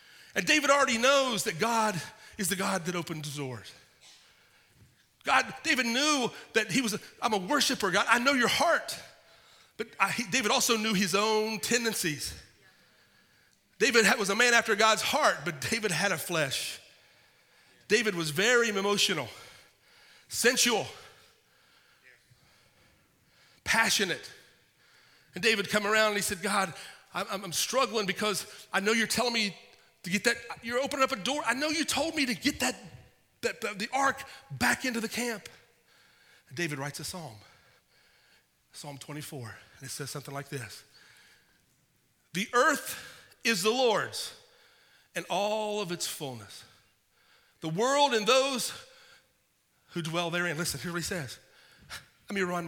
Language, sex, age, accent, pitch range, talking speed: English, male, 40-59, American, 175-250 Hz, 145 wpm